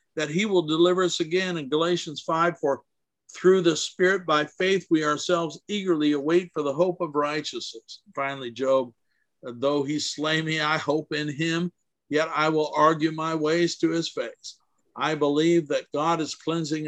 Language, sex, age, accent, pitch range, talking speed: English, male, 50-69, American, 130-170 Hz, 175 wpm